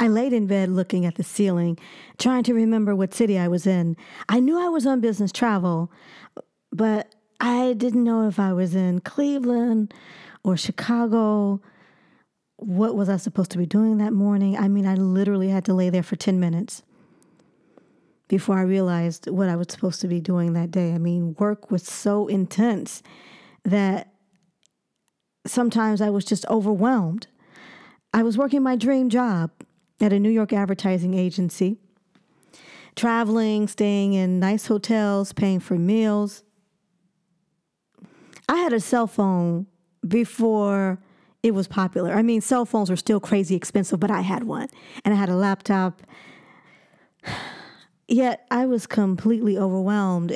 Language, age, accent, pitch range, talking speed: English, 40-59, American, 185-225 Hz, 155 wpm